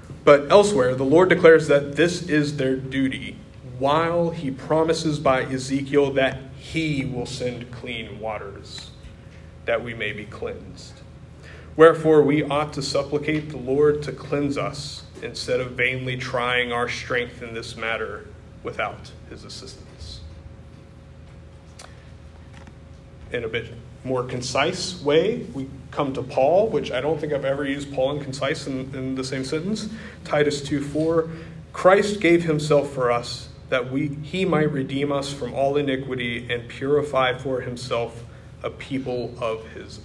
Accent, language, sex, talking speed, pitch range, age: American, English, male, 150 wpm, 110-145 Hz, 30-49